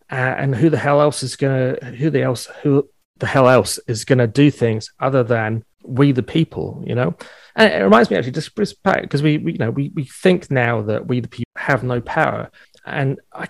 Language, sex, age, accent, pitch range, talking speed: English, male, 30-49, British, 110-145 Hz, 220 wpm